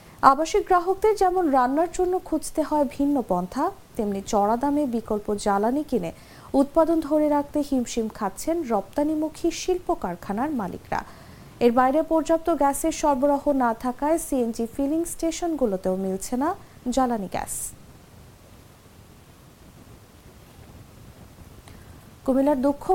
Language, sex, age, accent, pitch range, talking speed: English, female, 50-69, Indian, 235-330 Hz, 85 wpm